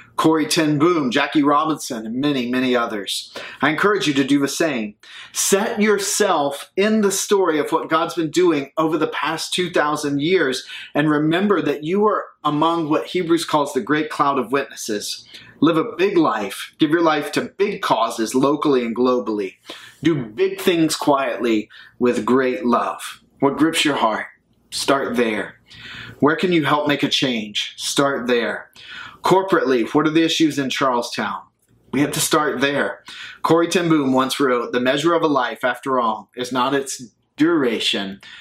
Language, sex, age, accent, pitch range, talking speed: English, male, 30-49, American, 130-165 Hz, 165 wpm